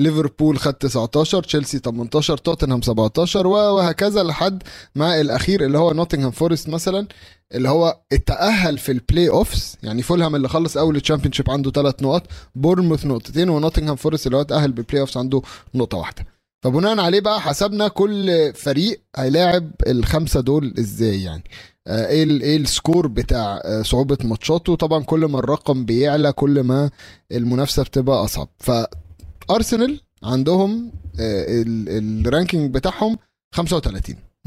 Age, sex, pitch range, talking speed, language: 20-39, male, 120-175 Hz, 135 wpm, Arabic